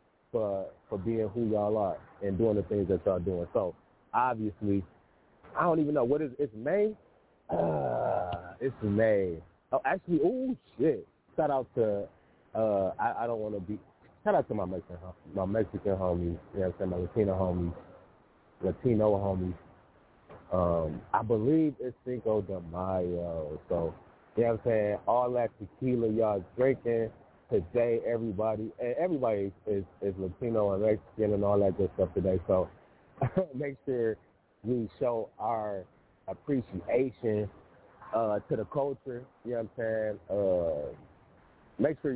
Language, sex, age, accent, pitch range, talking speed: English, male, 30-49, American, 100-130 Hz, 155 wpm